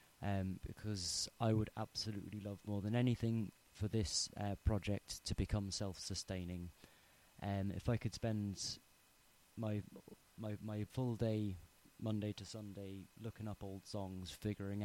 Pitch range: 95-115 Hz